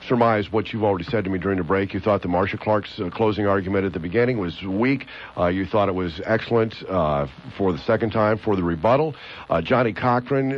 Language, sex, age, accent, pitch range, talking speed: English, male, 50-69, American, 100-130 Hz, 225 wpm